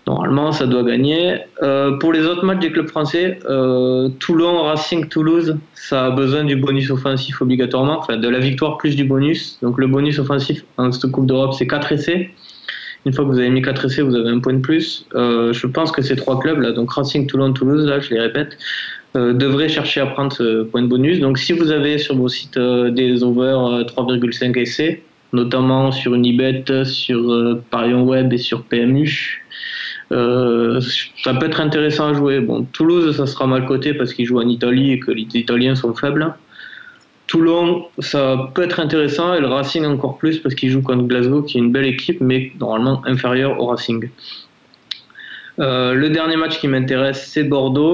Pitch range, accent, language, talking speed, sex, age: 125-150 Hz, French, French, 200 wpm, male, 20-39